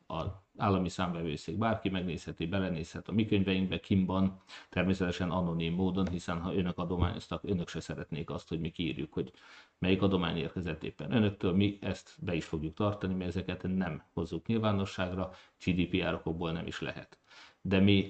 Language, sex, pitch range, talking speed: Hungarian, male, 85-100 Hz, 155 wpm